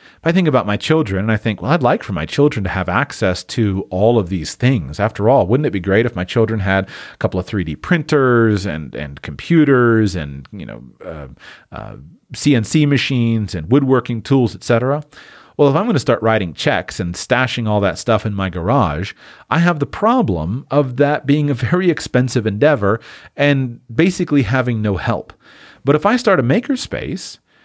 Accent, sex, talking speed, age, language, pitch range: American, male, 195 wpm, 40-59, English, 105-145 Hz